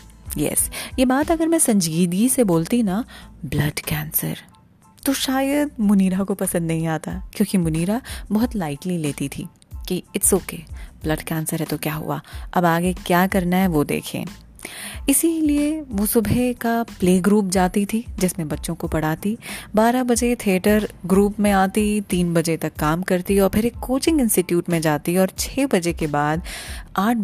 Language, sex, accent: Hindi, female, native